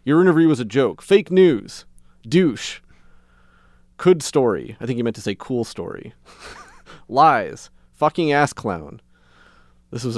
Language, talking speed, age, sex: English, 140 wpm, 30-49, male